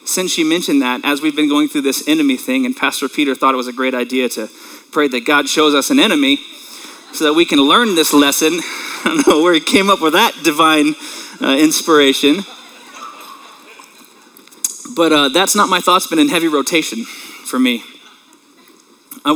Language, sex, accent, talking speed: English, male, American, 190 wpm